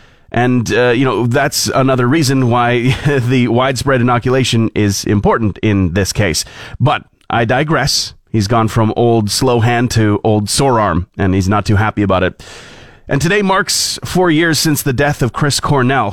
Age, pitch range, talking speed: 30-49, 105-135 Hz, 175 wpm